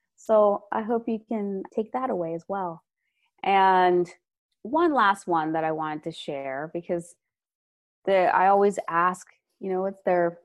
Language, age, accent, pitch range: English, 20-39, American, 165-210 Hz